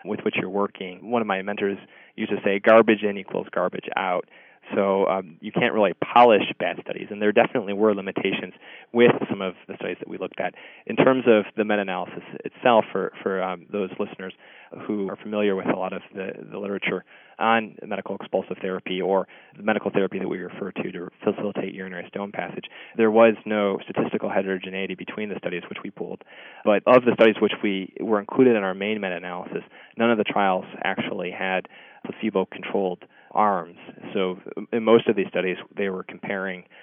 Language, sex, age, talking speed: English, male, 20-39, 190 wpm